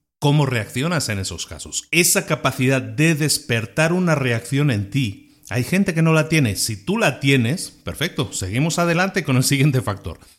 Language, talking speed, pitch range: Spanish, 175 wpm, 115-150 Hz